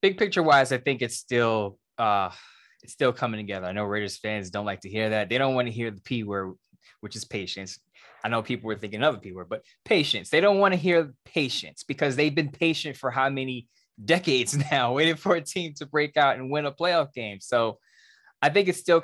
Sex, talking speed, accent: male, 235 wpm, American